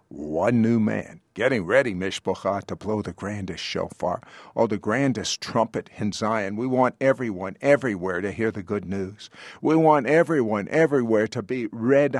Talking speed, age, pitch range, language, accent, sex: 160 wpm, 50-69, 110-145 Hz, English, American, male